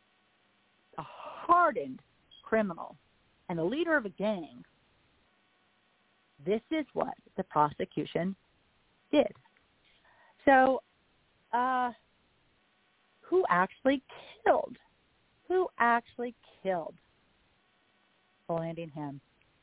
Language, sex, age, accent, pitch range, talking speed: English, female, 40-59, American, 170-265 Hz, 70 wpm